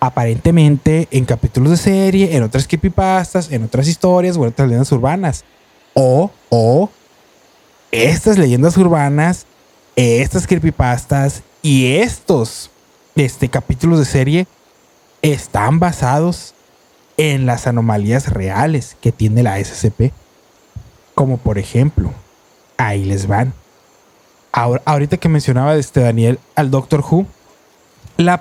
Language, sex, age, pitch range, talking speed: Spanish, male, 30-49, 120-170 Hz, 110 wpm